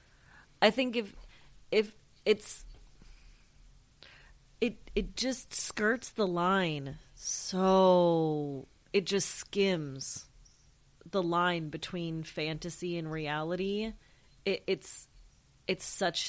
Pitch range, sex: 160-195 Hz, female